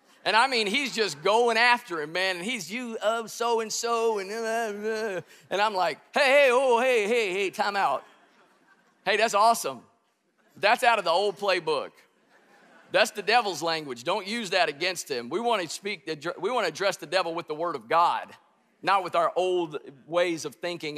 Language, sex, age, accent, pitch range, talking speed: English, male, 50-69, American, 160-225 Hz, 210 wpm